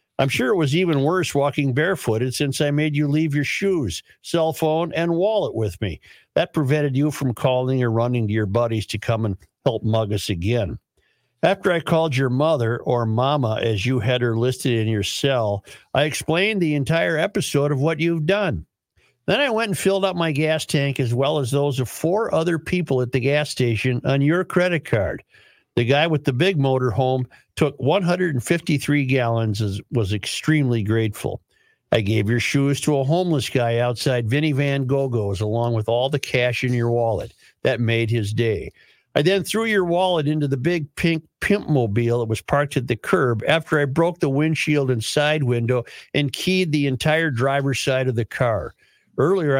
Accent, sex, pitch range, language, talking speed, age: American, male, 120-155 Hz, English, 195 wpm, 60-79